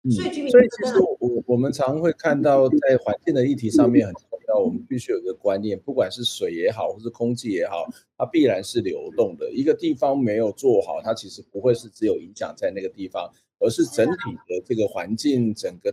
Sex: male